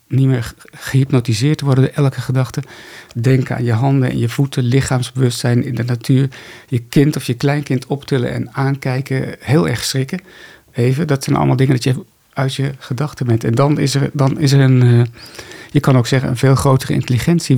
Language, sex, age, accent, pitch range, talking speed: Dutch, male, 50-69, Dutch, 120-140 Hz, 190 wpm